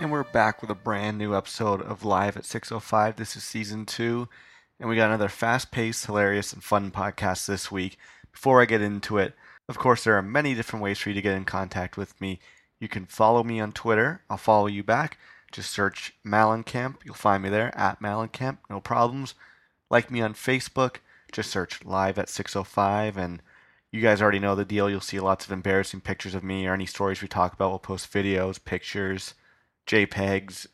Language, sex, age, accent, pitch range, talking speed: English, male, 30-49, American, 95-115 Hz, 200 wpm